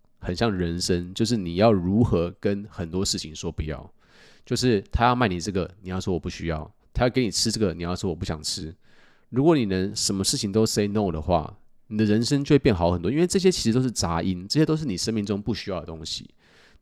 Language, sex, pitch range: Chinese, male, 90-115 Hz